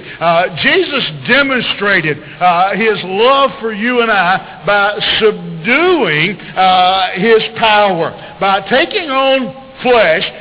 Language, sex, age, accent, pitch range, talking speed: English, male, 60-79, American, 200-255 Hz, 110 wpm